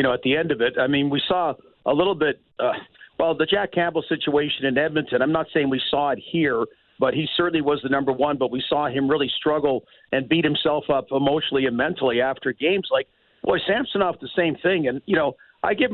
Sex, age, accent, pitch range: male, 50-69, American, 145-165 Hz